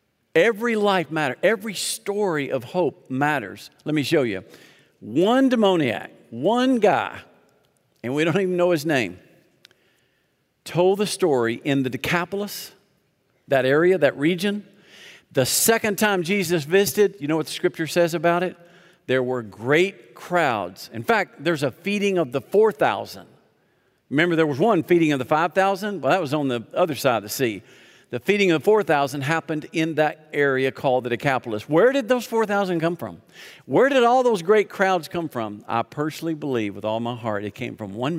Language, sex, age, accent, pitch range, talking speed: English, male, 50-69, American, 120-180 Hz, 175 wpm